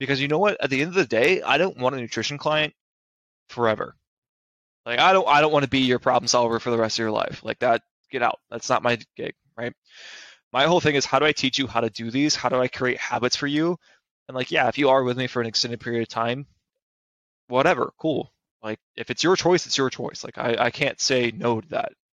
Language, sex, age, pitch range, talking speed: English, male, 20-39, 115-140 Hz, 260 wpm